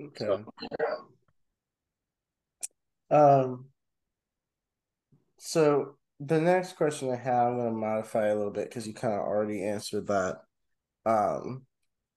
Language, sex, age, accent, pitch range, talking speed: English, male, 20-39, American, 105-125 Hz, 120 wpm